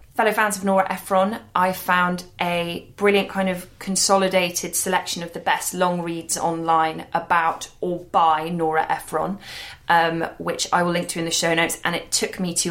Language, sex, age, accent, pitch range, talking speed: English, female, 20-39, British, 160-180 Hz, 185 wpm